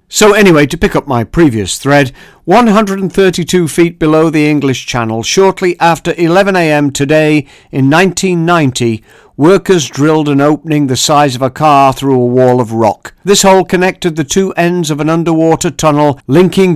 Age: 50-69